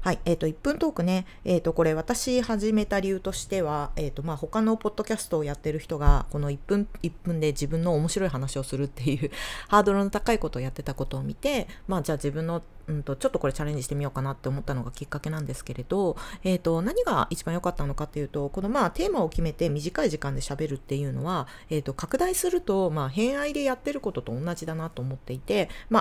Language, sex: Japanese, female